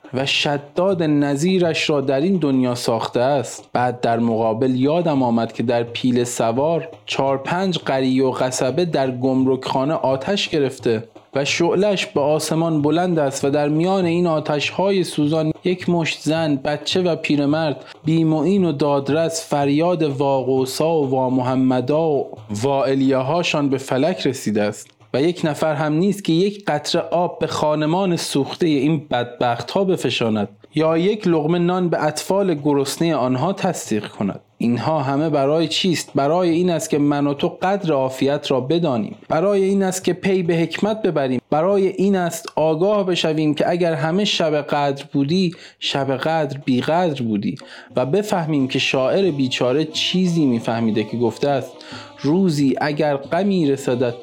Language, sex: Persian, male